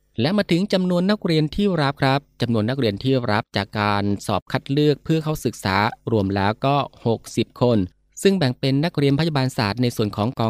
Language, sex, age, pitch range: Thai, male, 20-39, 110-140 Hz